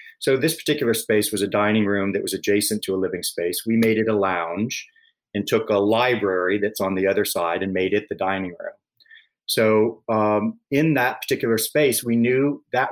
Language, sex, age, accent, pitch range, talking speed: English, male, 40-59, American, 100-115 Hz, 205 wpm